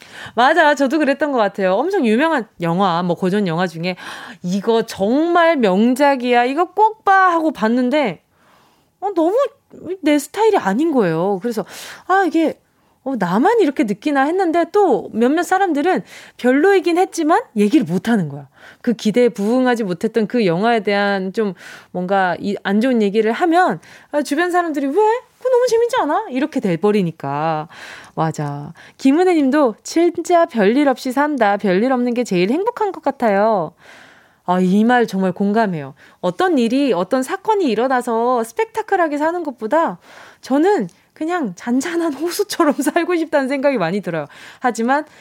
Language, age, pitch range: Korean, 20-39, 210-335 Hz